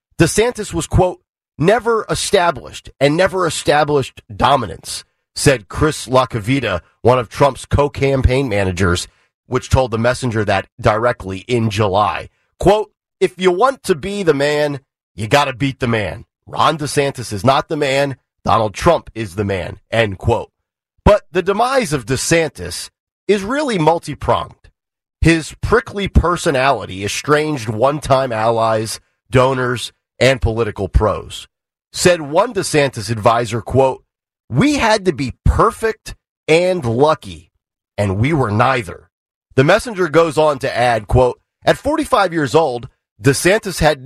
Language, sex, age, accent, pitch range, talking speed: English, male, 40-59, American, 115-170 Hz, 140 wpm